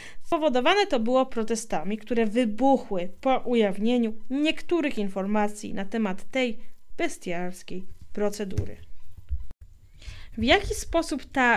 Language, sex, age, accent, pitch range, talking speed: Polish, female, 20-39, native, 220-300 Hz, 100 wpm